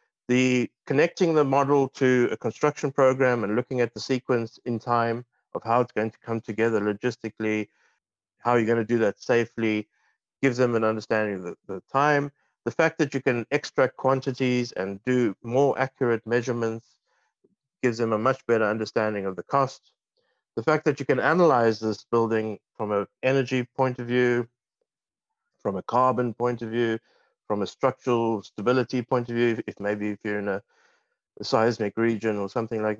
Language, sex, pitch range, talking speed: English, male, 110-130 Hz, 175 wpm